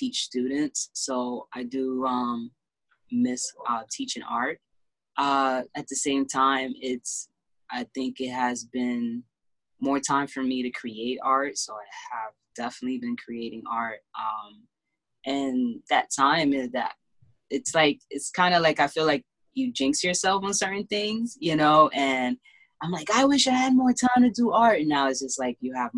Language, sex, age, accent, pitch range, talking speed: English, female, 20-39, American, 125-160 Hz, 180 wpm